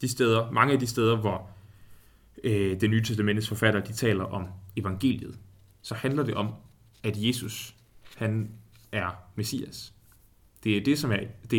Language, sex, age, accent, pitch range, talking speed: Danish, male, 30-49, native, 105-130 Hz, 160 wpm